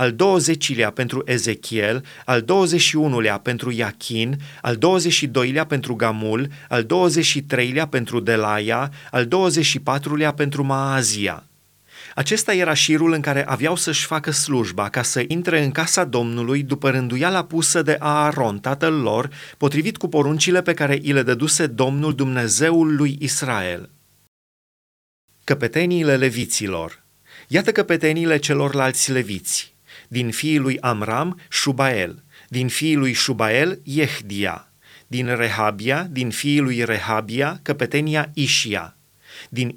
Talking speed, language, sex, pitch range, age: 120 wpm, Romanian, male, 120-155 Hz, 30-49